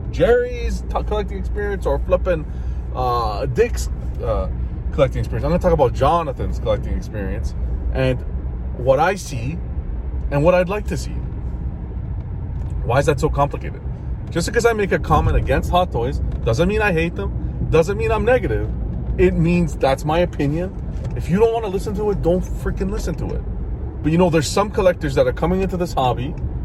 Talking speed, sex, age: 180 wpm, male, 30-49